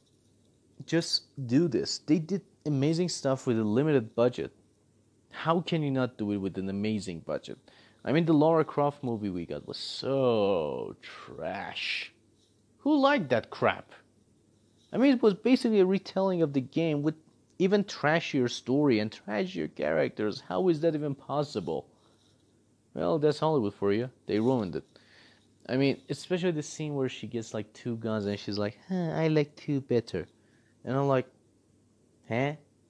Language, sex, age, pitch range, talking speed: English, male, 30-49, 110-150 Hz, 160 wpm